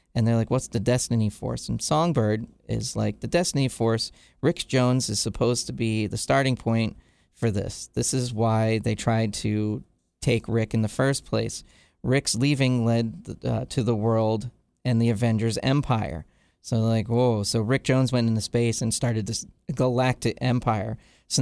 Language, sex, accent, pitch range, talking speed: English, male, American, 110-135 Hz, 180 wpm